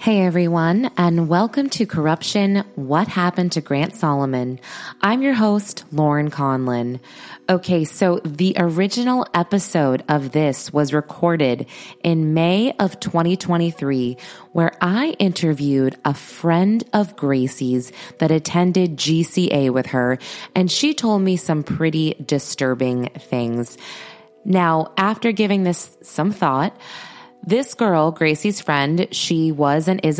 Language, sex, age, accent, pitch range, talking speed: English, female, 20-39, American, 135-185 Hz, 125 wpm